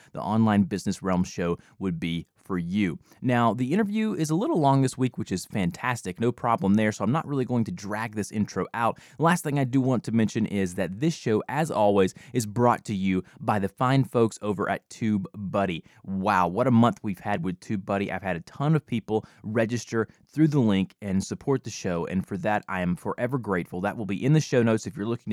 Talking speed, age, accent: 225 wpm, 20-39, American